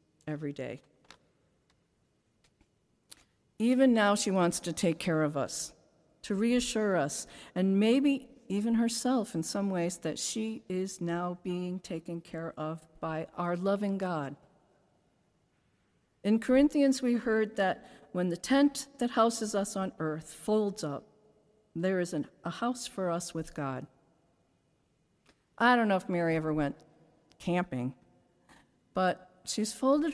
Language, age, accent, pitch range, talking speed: English, 50-69, American, 160-220 Hz, 135 wpm